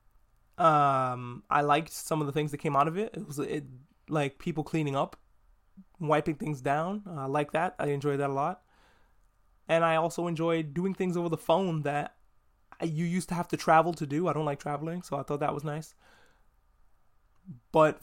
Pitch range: 140-170 Hz